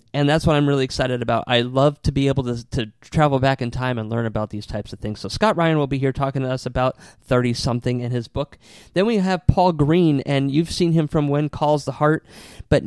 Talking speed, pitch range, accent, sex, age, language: 250 wpm, 120-165 Hz, American, male, 30-49, English